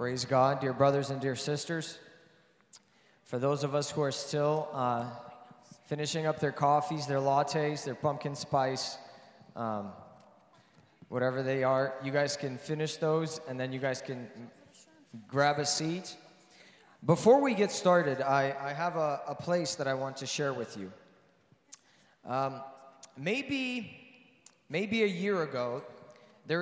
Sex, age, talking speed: male, 20-39, 145 wpm